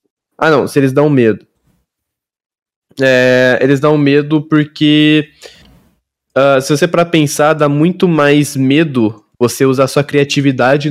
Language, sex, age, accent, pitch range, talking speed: Portuguese, male, 20-39, Brazilian, 120-145 Hz, 120 wpm